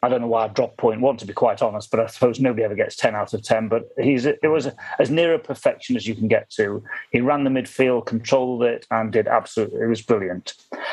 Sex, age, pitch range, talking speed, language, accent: male, 30-49, 115-135 Hz, 260 wpm, English, British